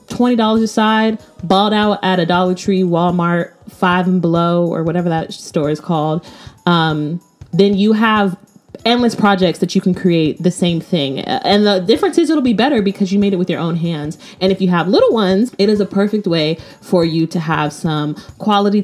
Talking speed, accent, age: 200 wpm, American, 20-39